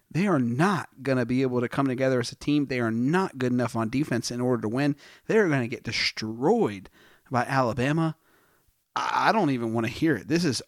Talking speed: 230 wpm